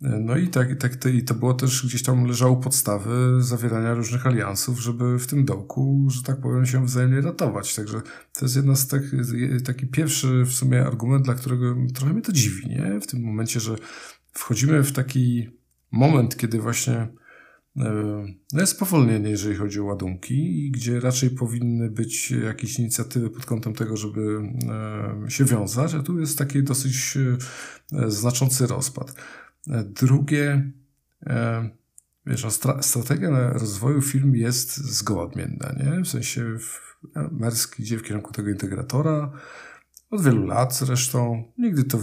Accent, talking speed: native, 155 wpm